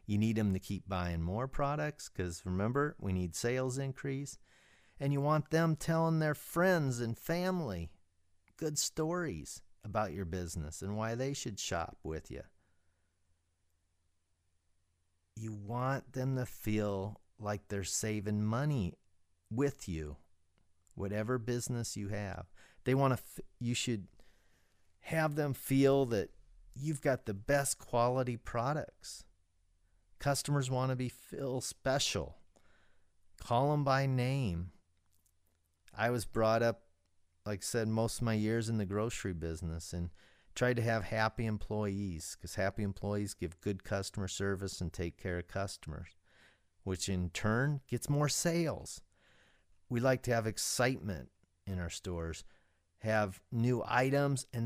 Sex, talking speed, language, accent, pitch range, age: male, 140 wpm, English, American, 85-125 Hz, 40-59